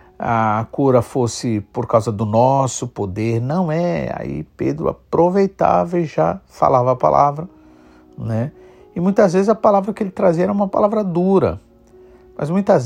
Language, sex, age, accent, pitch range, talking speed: Portuguese, male, 50-69, Brazilian, 110-170 Hz, 155 wpm